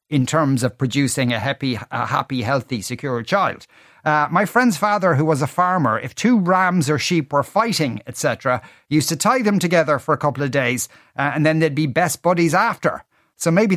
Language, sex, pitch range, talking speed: English, male, 130-175 Hz, 205 wpm